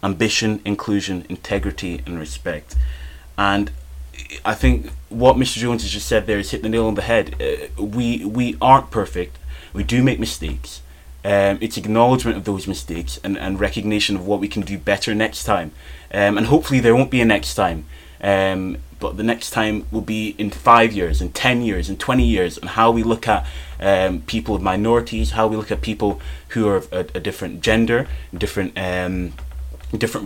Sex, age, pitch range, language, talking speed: male, 20-39, 75-110 Hz, English, 190 wpm